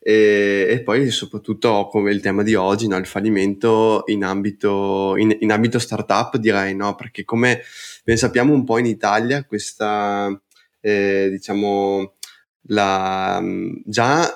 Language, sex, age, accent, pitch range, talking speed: Italian, male, 20-39, native, 100-110 Hz, 140 wpm